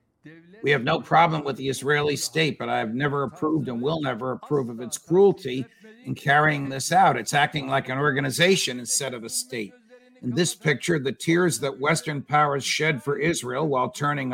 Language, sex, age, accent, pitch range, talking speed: English, male, 60-79, American, 140-170 Hz, 195 wpm